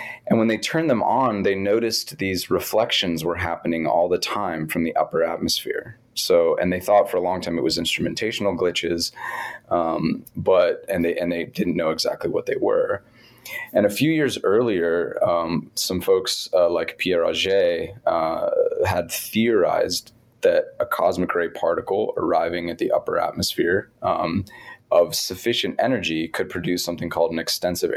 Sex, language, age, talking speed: male, English, 20-39, 165 wpm